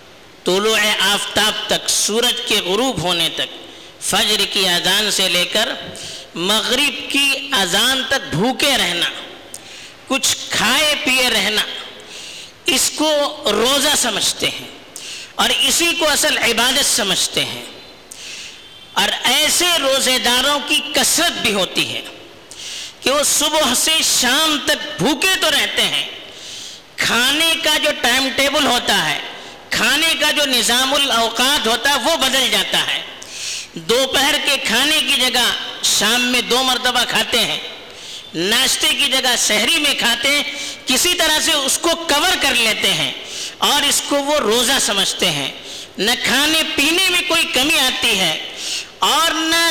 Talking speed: 140 wpm